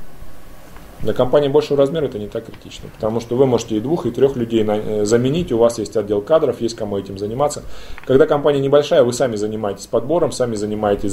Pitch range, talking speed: 105-135 Hz, 200 wpm